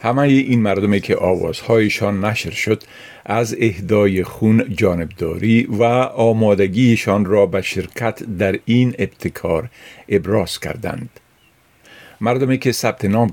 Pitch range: 95-125 Hz